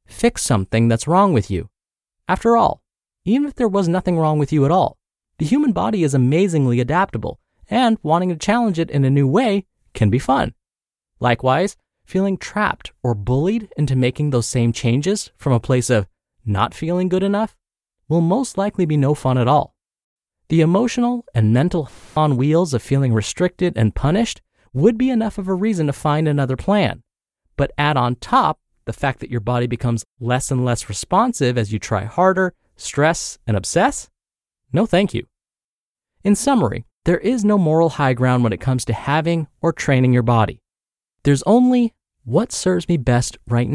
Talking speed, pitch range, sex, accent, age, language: 180 wpm, 120-185 Hz, male, American, 20-39, English